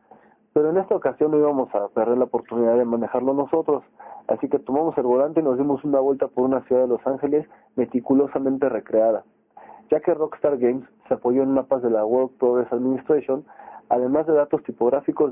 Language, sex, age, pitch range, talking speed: Spanish, male, 40-59, 125-150 Hz, 190 wpm